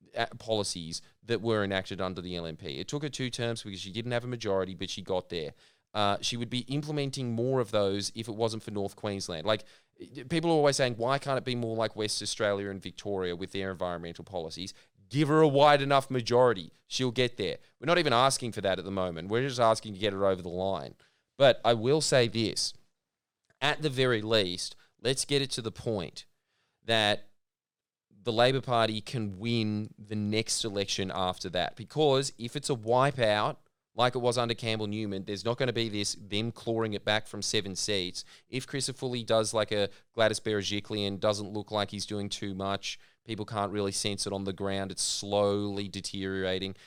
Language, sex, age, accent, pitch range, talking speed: English, male, 20-39, Australian, 95-120 Hz, 200 wpm